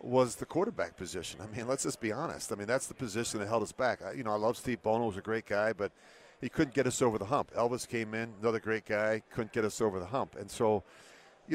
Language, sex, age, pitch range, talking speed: English, male, 40-59, 105-135 Hz, 275 wpm